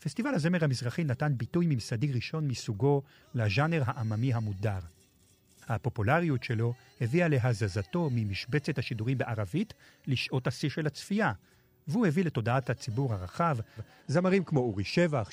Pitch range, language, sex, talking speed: 110-145 Hz, Hebrew, male, 120 wpm